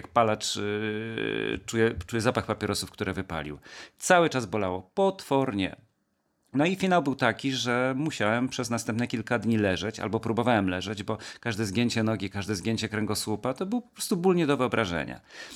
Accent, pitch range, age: native, 110-145 Hz, 40-59